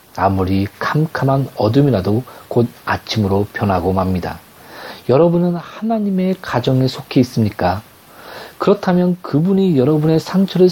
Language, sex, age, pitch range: Korean, male, 40-59, 105-165 Hz